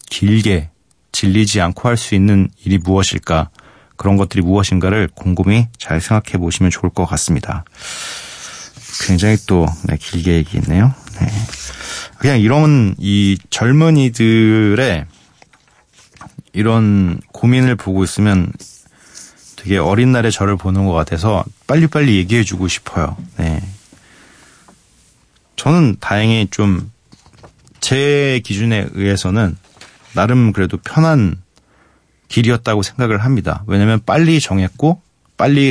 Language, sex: Korean, male